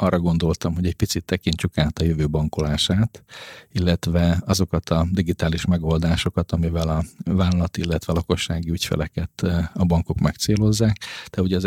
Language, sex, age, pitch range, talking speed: Hungarian, male, 40-59, 85-95 Hz, 140 wpm